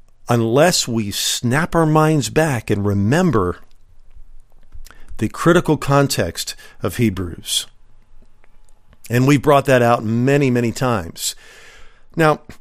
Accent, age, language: American, 50-69, English